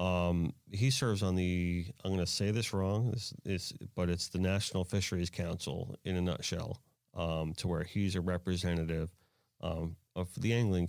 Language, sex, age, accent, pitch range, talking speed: English, male, 30-49, American, 85-110 Hz, 175 wpm